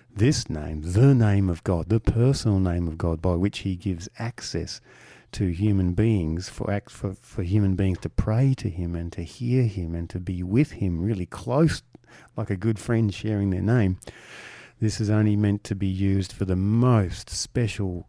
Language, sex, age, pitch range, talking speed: English, male, 50-69, 95-120 Hz, 190 wpm